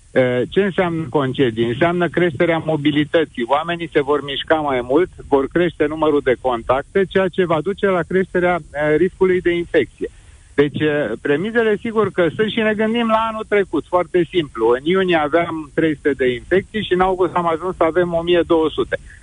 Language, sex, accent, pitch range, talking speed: Romanian, male, native, 140-180 Hz, 165 wpm